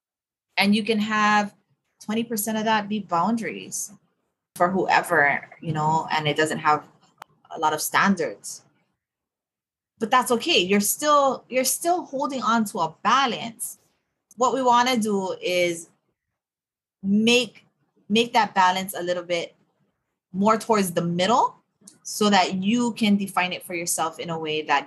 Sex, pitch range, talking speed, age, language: female, 170-225 Hz, 150 wpm, 20-39, English